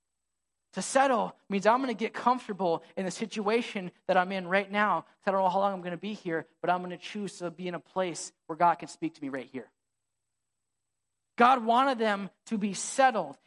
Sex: male